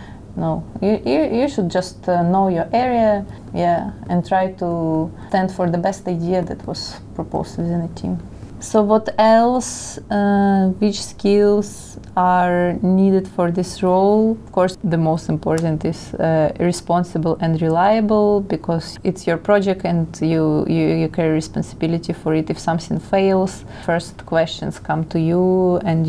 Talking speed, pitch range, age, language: 150 wpm, 160-185 Hz, 20-39, Slovak